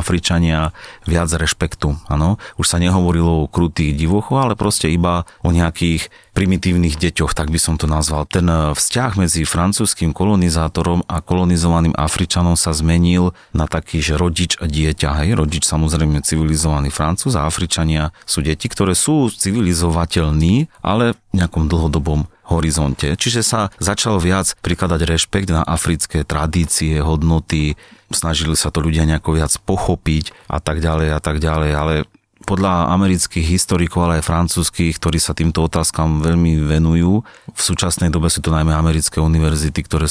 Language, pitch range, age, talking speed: Slovak, 80-90 Hz, 30-49, 145 wpm